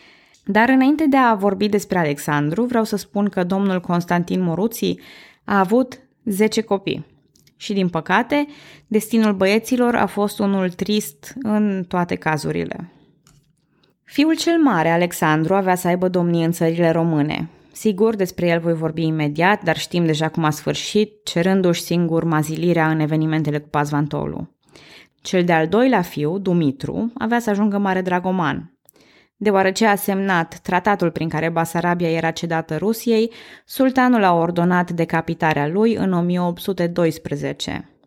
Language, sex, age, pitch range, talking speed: Romanian, female, 20-39, 160-215 Hz, 135 wpm